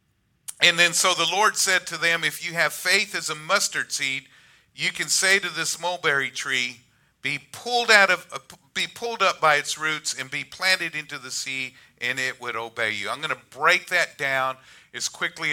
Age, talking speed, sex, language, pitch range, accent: 50-69, 190 wpm, male, English, 135-195 Hz, American